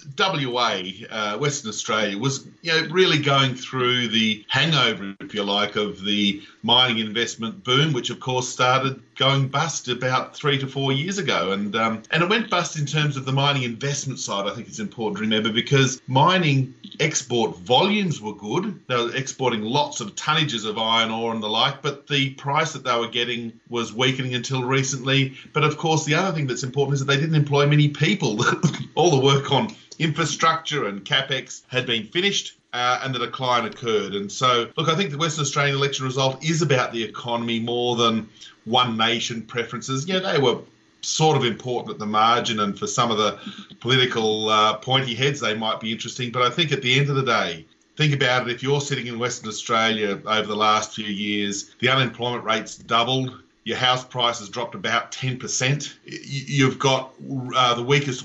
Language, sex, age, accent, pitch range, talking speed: English, male, 40-59, Australian, 115-145 Hz, 195 wpm